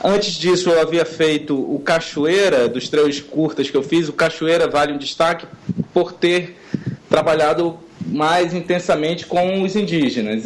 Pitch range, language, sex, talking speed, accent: 150-185 Hz, Portuguese, male, 150 wpm, Brazilian